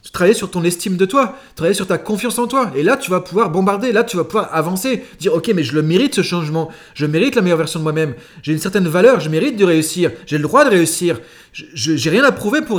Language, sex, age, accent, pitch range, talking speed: French, male, 30-49, French, 160-230 Hz, 270 wpm